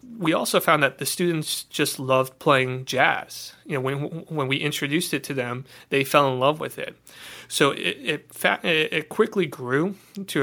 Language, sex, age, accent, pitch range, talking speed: English, male, 30-49, American, 135-160 Hz, 185 wpm